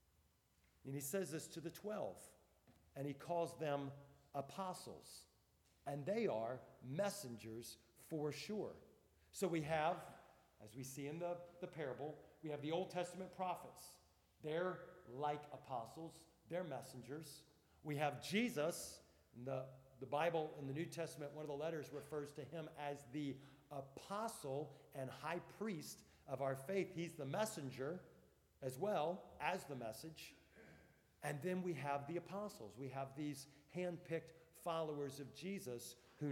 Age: 40-59